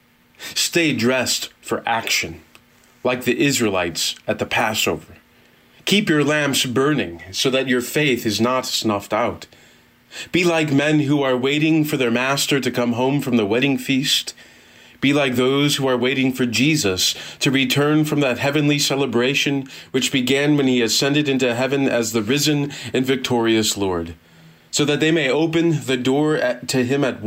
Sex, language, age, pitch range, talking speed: male, English, 30-49, 115-145 Hz, 165 wpm